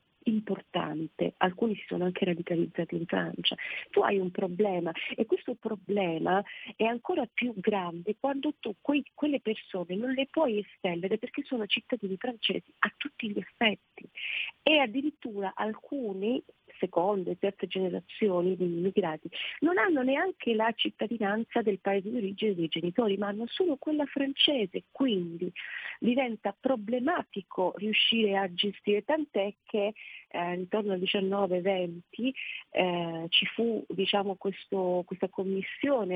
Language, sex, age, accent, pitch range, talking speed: Italian, female, 40-59, native, 185-250 Hz, 130 wpm